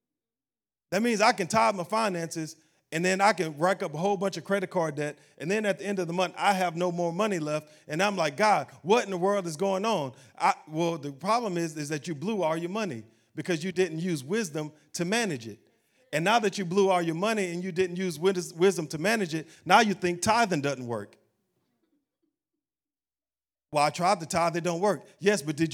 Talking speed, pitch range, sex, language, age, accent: 225 wpm, 160-205 Hz, male, English, 40-59, American